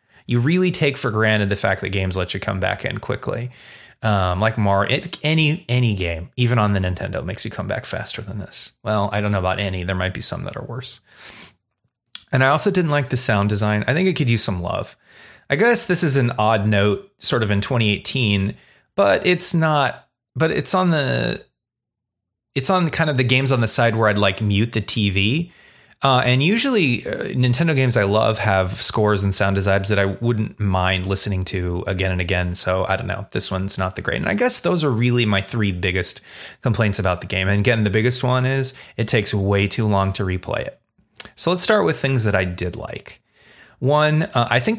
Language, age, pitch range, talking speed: English, 30-49, 100-135 Hz, 220 wpm